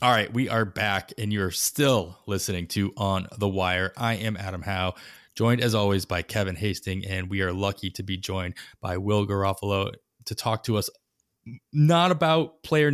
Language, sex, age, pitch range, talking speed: English, male, 20-39, 100-120 Hz, 185 wpm